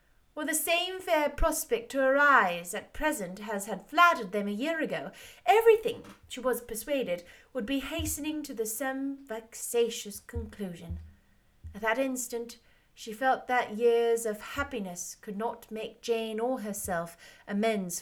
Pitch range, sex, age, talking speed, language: 210-270 Hz, female, 30-49, 150 wpm, English